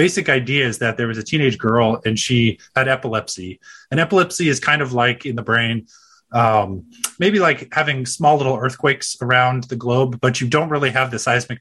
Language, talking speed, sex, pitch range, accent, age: English, 200 wpm, male, 115-145 Hz, American, 30-49